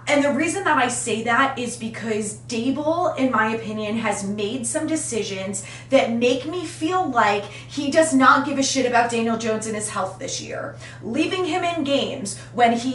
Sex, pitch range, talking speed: female, 240-320 Hz, 195 wpm